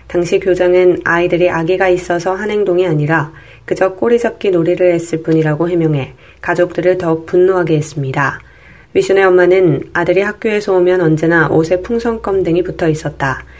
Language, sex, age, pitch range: Korean, female, 20-39, 160-190 Hz